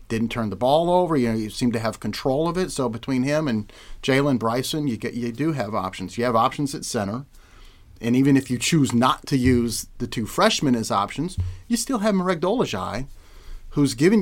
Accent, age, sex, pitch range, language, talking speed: American, 40-59, male, 115-140 Hz, English, 215 wpm